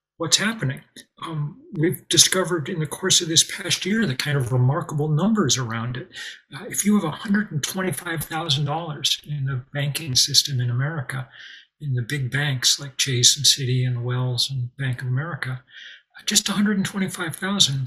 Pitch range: 130-165 Hz